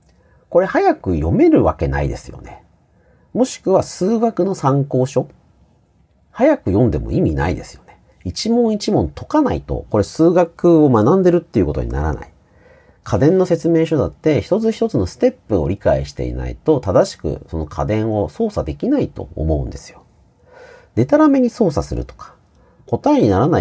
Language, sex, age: Japanese, male, 40-59